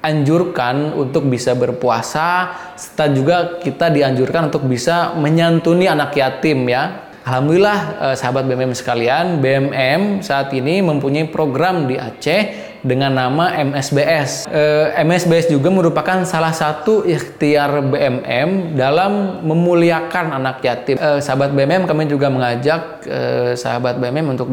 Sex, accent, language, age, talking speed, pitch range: male, native, Indonesian, 20-39, 125 wpm, 130-165 Hz